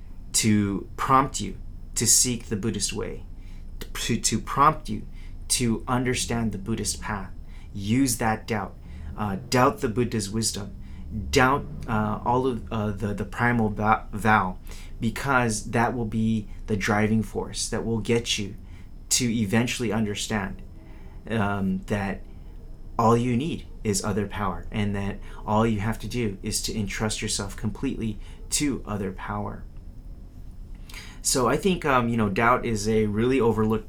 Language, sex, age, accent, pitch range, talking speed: English, male, 30-49, American, 100-115 Hz, 145 wpm